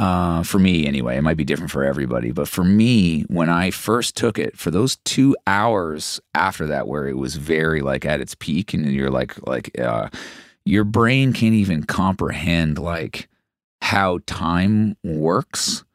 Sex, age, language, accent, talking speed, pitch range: male, 30-49, English, American, 175 wpm, 80-110 Hz